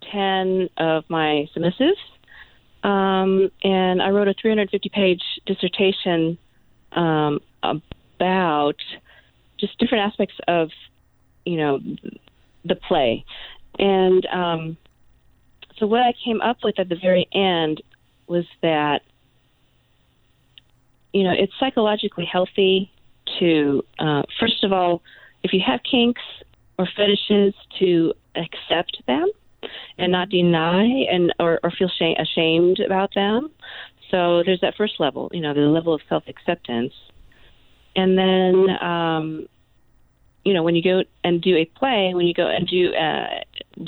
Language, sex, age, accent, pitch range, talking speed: English, female, 40-59, American, 165-200 Hz, 130 wpm